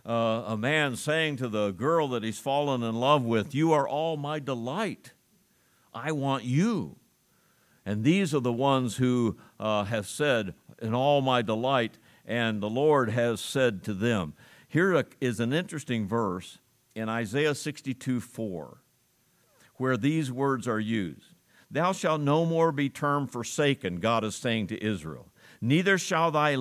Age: 50-69